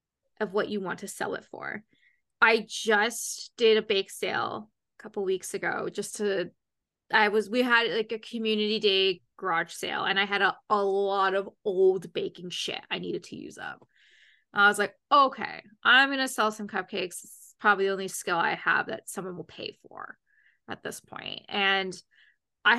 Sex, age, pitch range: female, 20-39, 205-265 Hz